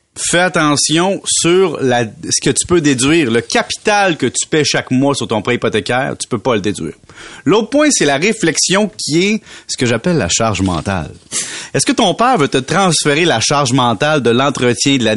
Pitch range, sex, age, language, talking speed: 130-175 Hz, male, 30-49, French, 205 wpm